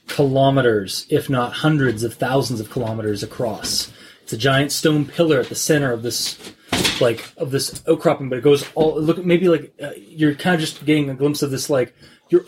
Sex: male